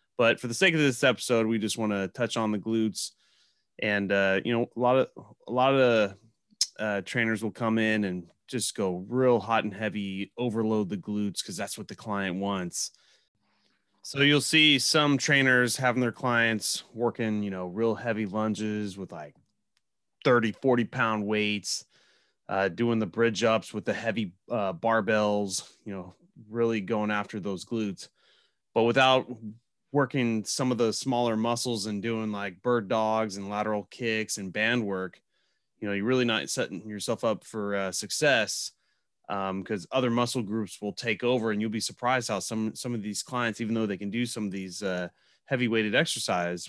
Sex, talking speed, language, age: male, 185 wpm, English, 30-49